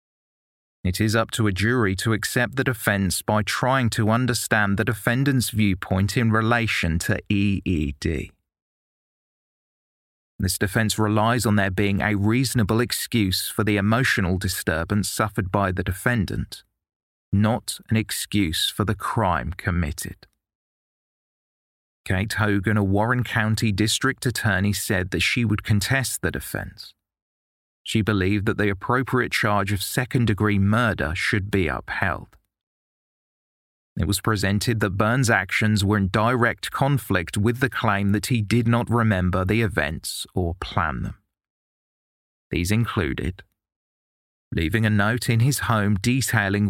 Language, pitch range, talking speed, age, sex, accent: English, 95-115 Hz, 130 wpm, 30-49, male, British